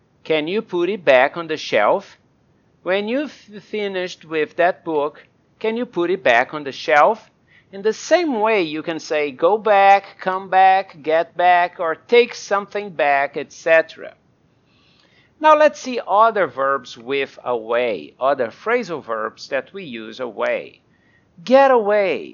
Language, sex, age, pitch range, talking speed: English, male, 50-69, 150-220 Hz, 150 wpm